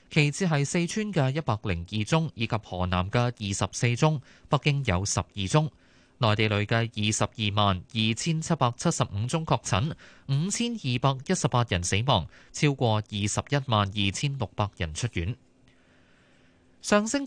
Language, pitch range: Chinese, 105-150 Hz